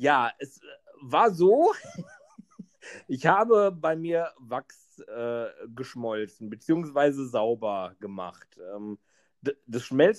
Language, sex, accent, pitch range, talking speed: German, male, German, 130-185 Hz, 100 wpm